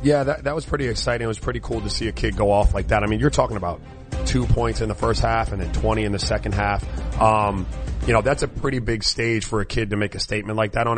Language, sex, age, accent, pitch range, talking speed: English, male, 30-49, American, 110-130 Hz, 295 wpm